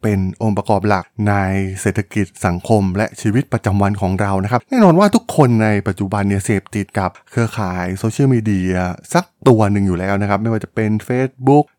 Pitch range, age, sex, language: 105-135 Hz, 20-39, male, Thai